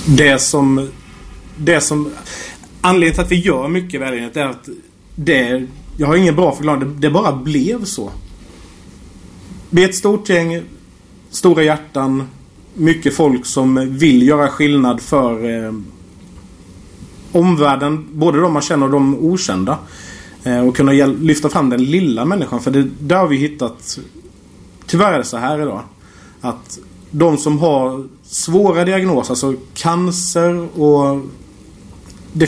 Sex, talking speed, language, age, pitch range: male, 140 wpm, English, 30-49, 115-160 Hz